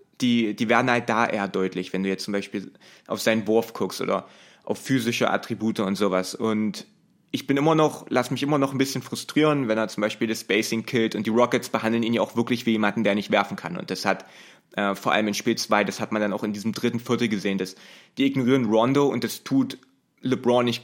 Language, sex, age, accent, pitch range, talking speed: German, male, 20-39, German, 105-120 Hz, 240 wpm